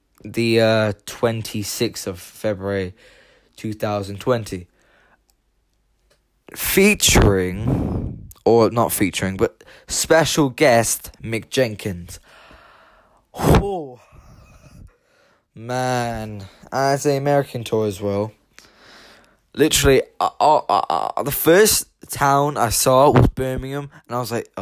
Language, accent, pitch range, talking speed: English, British, 100-125 Hz, 95 wpm